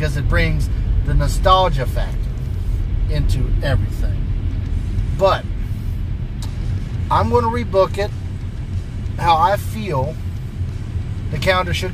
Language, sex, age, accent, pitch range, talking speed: English, male, 40-59, American, 95-120 Hz, 95 wpm